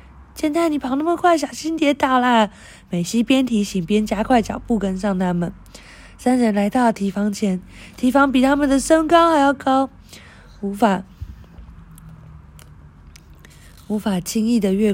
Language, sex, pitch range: Chinese, female, 195-265 Hz